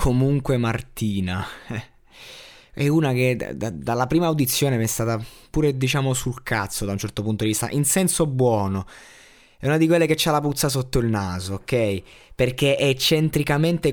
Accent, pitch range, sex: native, 110-140 Hz, male